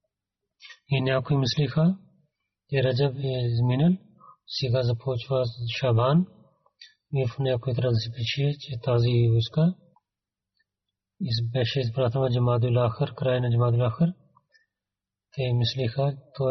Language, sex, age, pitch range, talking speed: Bulgarian, male, 40-59, 120-140 Hz, 110 wpm